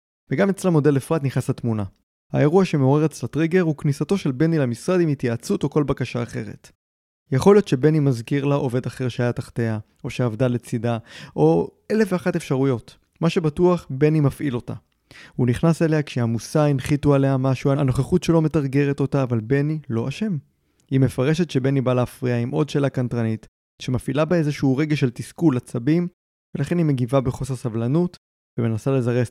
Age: 20-39